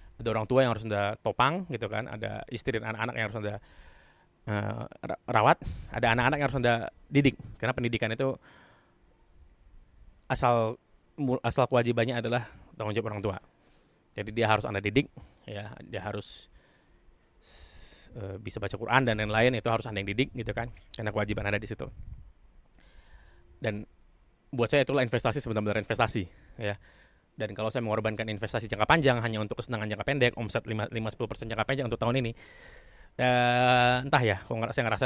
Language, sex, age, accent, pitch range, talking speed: Indonesian, male, 20-39, native, 110-125 Hz, 160 wpm